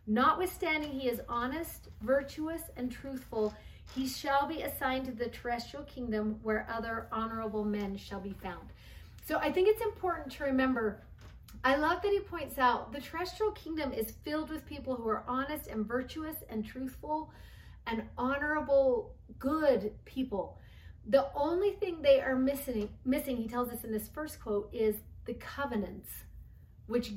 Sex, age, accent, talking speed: female, 40-59, American, 155 wpm